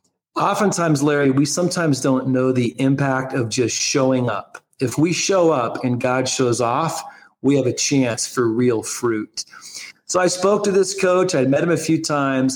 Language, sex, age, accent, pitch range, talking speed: English, male, 40-59, American, 125-155 Hz, 185 wpm